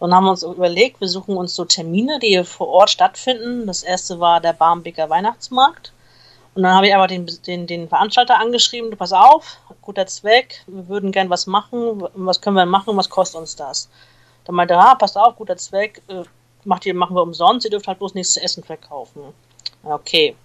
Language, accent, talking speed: German, German, 210 wpm